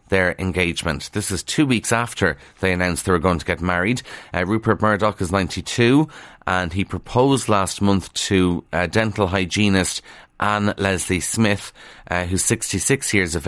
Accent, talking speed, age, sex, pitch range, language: Irish, 165 wpm, 30-49, male, 90-110 Hz, English